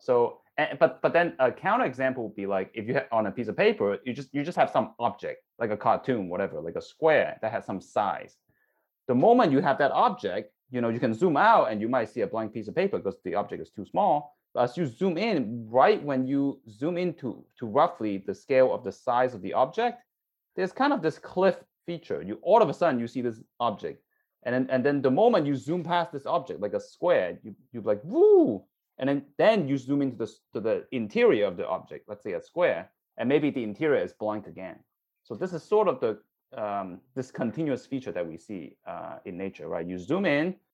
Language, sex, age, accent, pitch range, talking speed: English, male, 20-39, Chinese, 120-190 Hz, 235 wpm